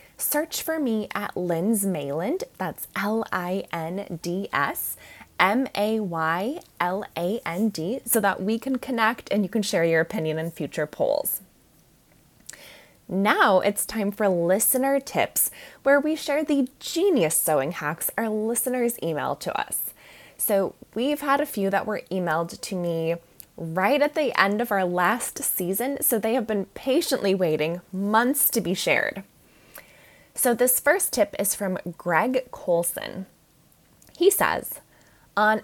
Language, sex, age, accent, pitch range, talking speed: English, female, 20-39, American, 175-255 Hz, 130 wpm